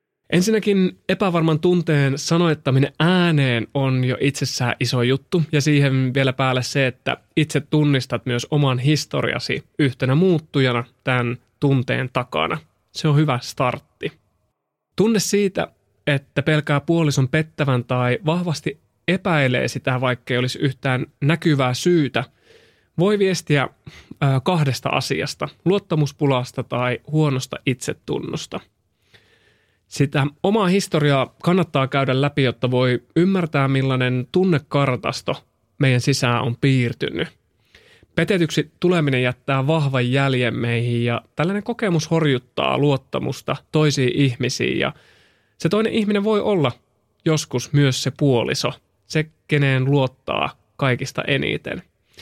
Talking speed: 110 wpm